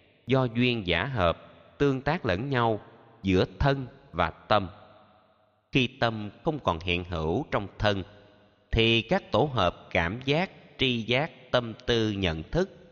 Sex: male